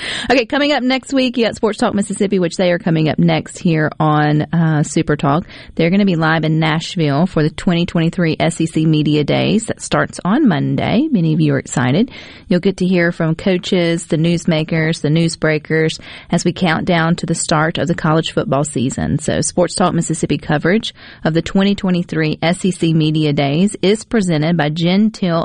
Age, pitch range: 40-59, 155-190 Hz